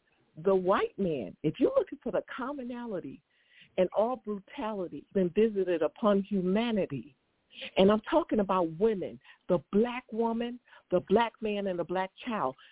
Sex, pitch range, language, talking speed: female, 185-240 Hz, English, 150 wpm